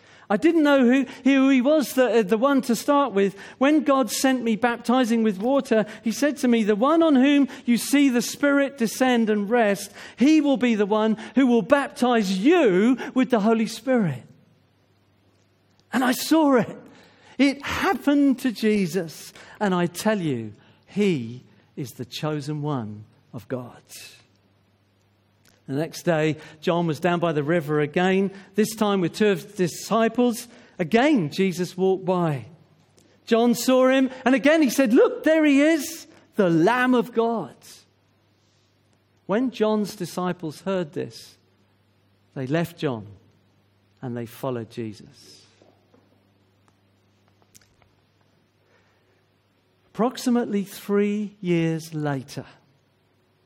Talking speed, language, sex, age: 135 wpm, English, male, 50-69